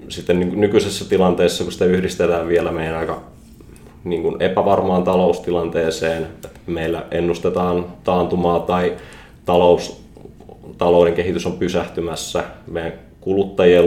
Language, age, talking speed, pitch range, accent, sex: Finnish, 20-39, 105 wpm, 85-90 Hz, native, male